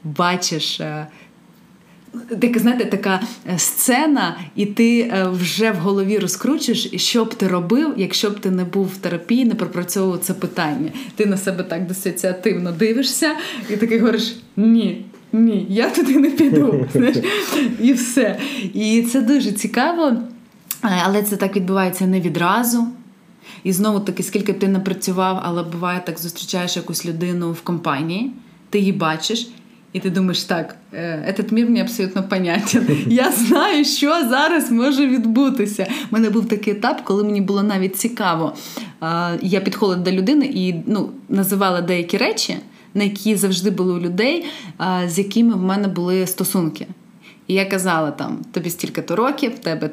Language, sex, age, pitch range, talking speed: Ukrainian, female, 20-39, 185-240 Hz, 150 wpm